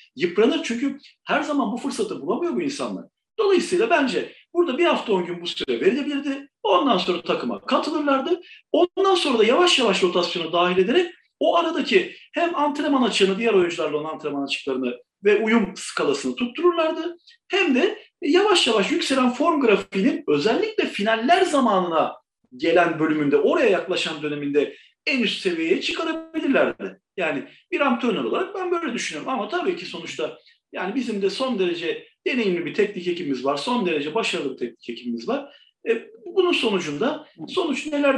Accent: native